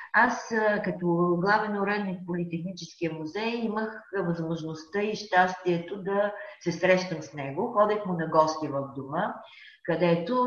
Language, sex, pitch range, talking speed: Bulgarian, female, 165-200 Hz, 130 wpm